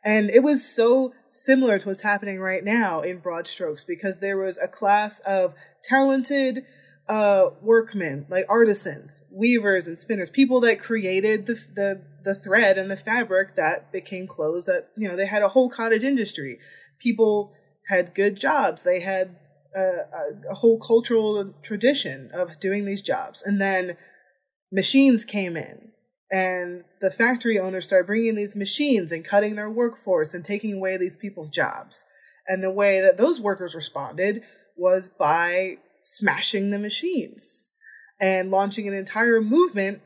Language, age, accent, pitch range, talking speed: English, 20-39, American, 185-230 Hz, 155 wpm